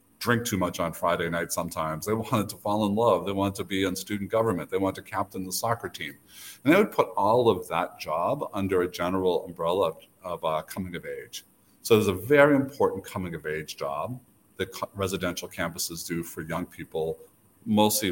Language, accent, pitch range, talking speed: English, American, 90-110 Hz, 205 wpm